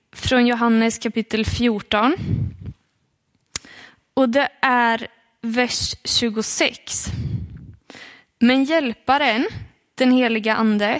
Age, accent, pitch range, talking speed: 20-39, native, 230-280 Hz, 75 wpm